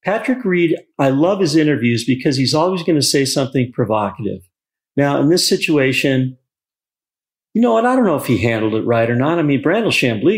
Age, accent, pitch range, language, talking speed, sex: 40-59, American, 120-165 Hz, English, 200 wpm, male